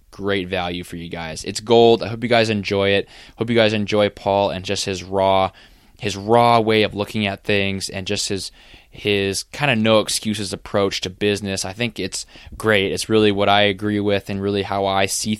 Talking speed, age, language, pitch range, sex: 215 wpm, 20-39, English, 95-110 Hz, male